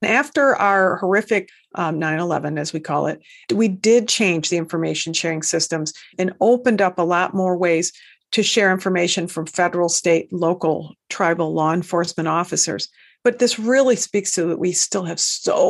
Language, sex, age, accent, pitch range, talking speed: English, female, 50-69, American, 175-210 Hz, 170 wpm